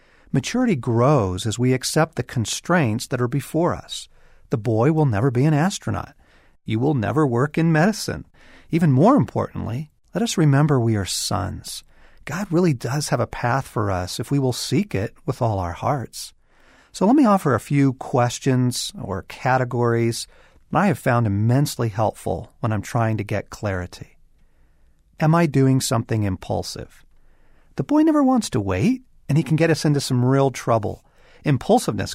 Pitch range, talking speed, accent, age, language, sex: 115-155 Hz, 170 wpm, American, 50-69, English, male